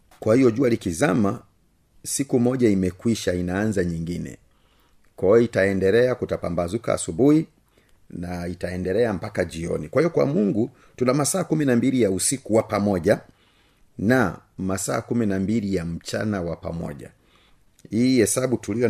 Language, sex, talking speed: Swahili, male, 125 wpm